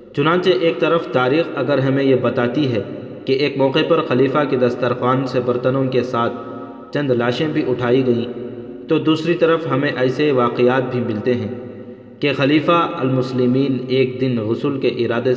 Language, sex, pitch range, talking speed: Urdu, male, 120-135 Hz, 165 wpm